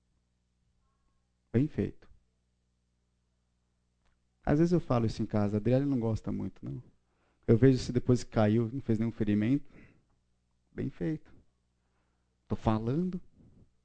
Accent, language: Brazilian, Portuguese